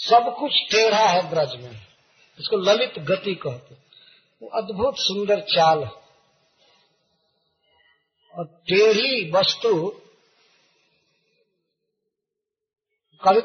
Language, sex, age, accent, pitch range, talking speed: Hindi, male, 50-69, native, 150-225 Hz, 90 wpm